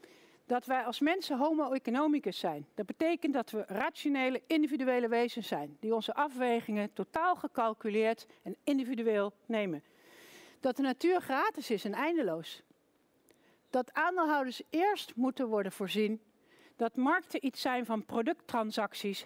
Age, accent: 60-79, Dutch